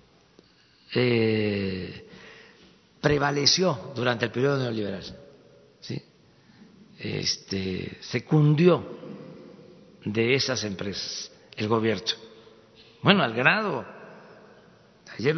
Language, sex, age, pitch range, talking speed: Spanish, male, 50-69, 120-195 Hz, 65 wpm